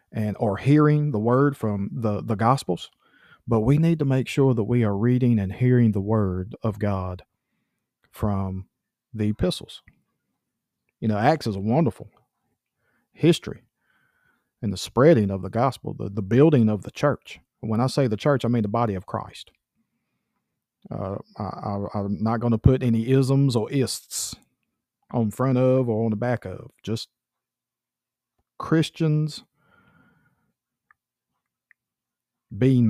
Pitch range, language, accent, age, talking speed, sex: 105-130 Hz, English, American, 40-59, 150 wpm, male